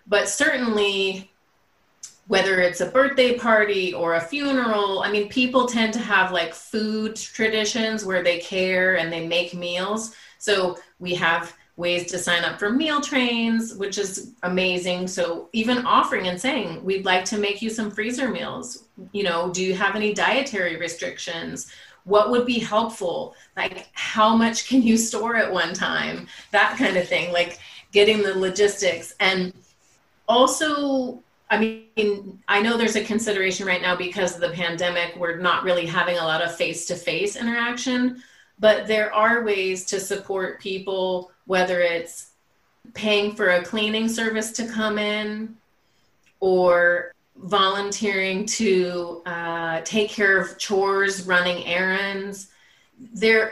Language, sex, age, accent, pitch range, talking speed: English, female, 30-49, American, 180-220 Hz, 150 wpm